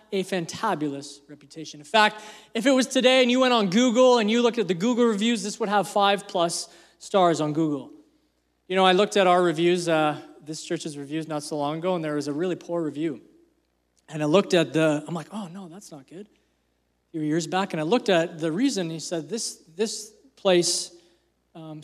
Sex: male